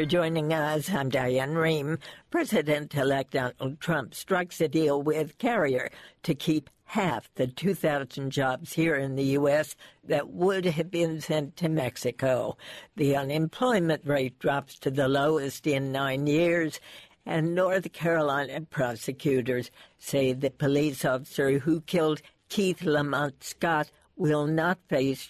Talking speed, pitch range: 135 wpm, 140-165 Hz